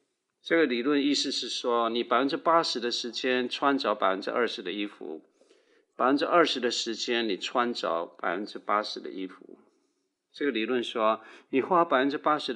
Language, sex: Chinese, male